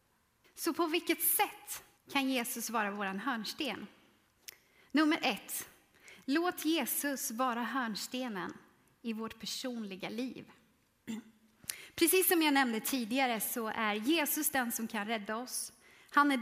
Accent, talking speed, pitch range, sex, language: native, 125 wpm, 230-290 Hz, female, Swedish